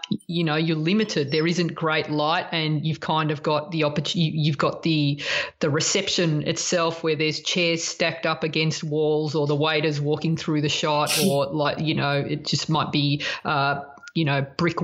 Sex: female